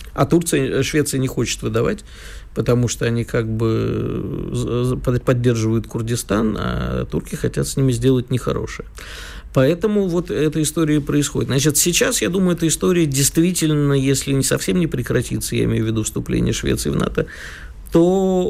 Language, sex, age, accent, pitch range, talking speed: Russian, male, 50-69, native, 115-150 Hz, 150 wpm